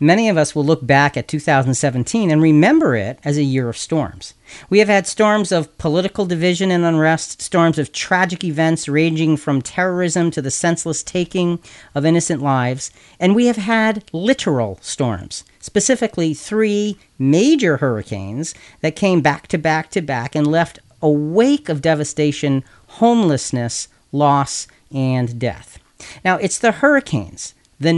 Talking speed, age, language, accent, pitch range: 150 wpm, 40-59, English, American, 140-195 Hz